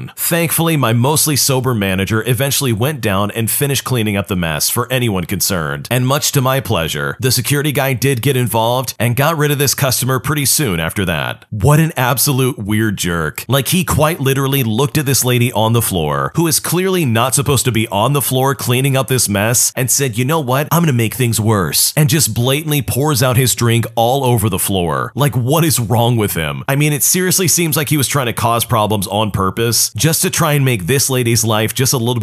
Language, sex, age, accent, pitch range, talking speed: English, male, 40-59, American, 110-140 Hz, 225 wpm